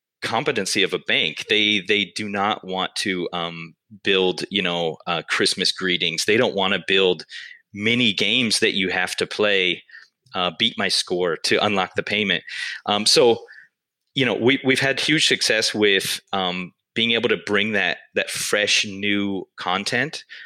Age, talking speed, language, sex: 30-49, 165 wpm, English, male